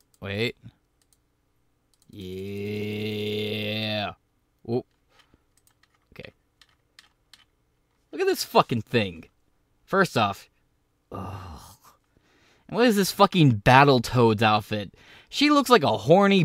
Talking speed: 90 wpm